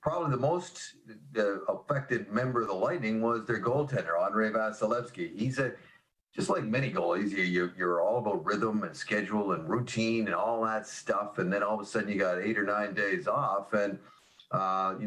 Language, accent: English, American